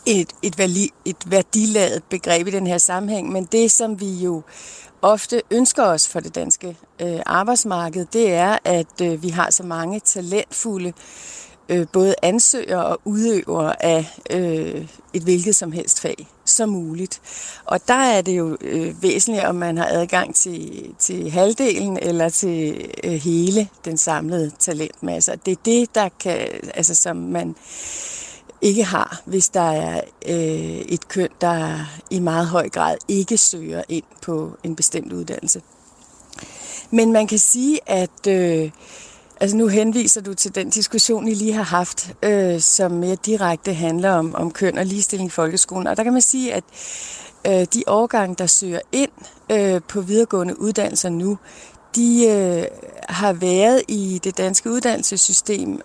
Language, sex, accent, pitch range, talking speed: Danish, female, native, 170-215 Hz, 160 wpm